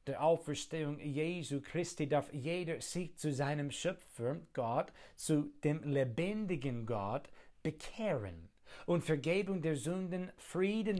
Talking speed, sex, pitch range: 115 wpm, male, 140-175 Hz